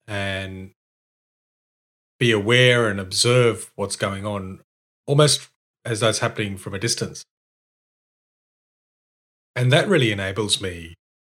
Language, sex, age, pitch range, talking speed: English, male, 30-49, 100-120 Hz, 110 wpm